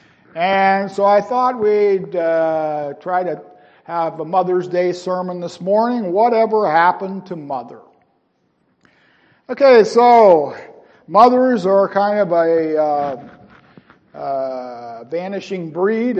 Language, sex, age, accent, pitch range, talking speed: English, male, 50-69, American, 160-205 Hz, 110 wpm